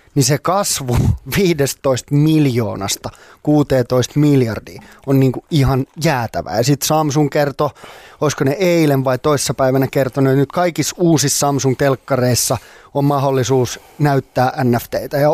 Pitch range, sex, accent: 125-150 Hz, male, native